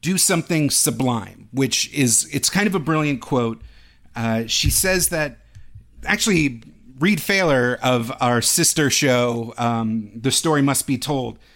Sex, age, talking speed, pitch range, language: male, 40-59, 145 wpm, 125-160 Hz, English